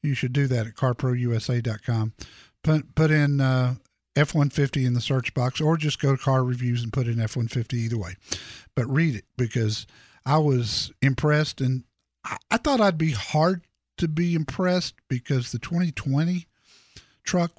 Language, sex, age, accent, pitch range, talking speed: English, male, 50-69, American, 120-165 Hz, 165 wpm